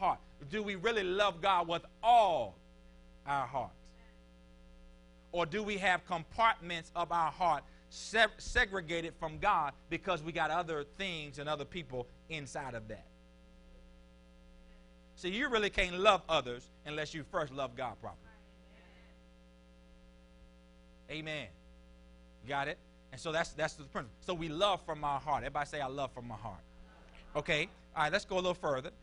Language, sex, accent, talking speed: English, male, American, 155 wpm